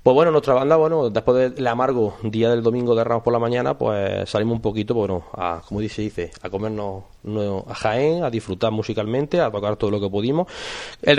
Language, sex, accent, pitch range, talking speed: Spanish, male, Spanish, 100-120 Hz, 215 wpm